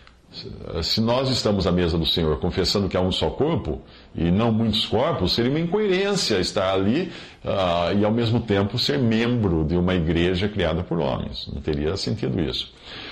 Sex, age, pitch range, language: male, 50-69, 85-105 Hz, English